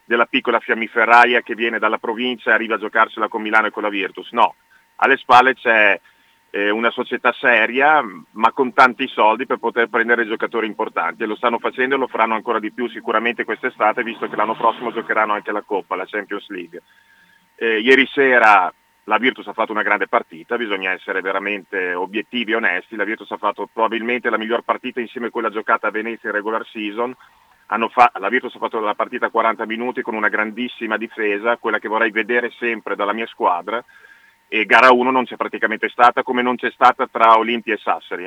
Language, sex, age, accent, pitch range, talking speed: Italian, male, 40-59, native, 110-125 Hz, 200 wpm